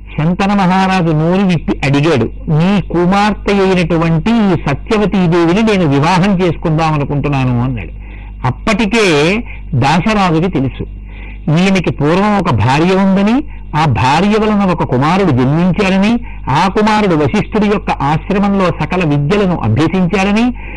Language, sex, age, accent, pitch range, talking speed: Telugu, male, 60-79, native, 150-210 Hz, 105 wpm